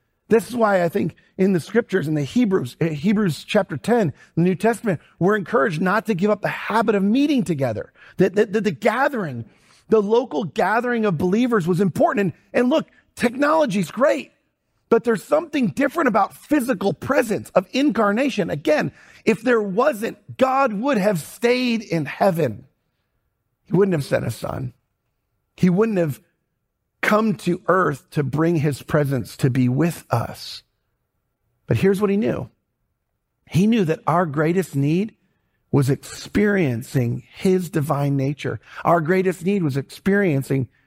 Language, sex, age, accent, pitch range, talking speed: English, male, 40-59, American, 140-215 Hz, 155 wpm